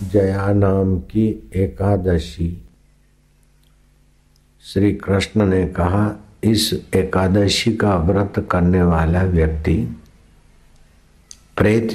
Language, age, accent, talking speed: Hindi, 60-79, native, 80 wpm